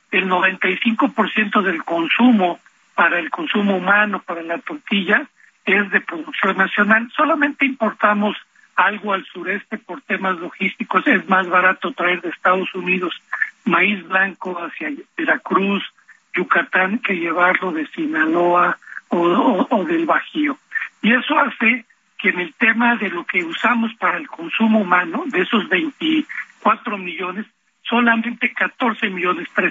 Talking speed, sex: 135 wpm, male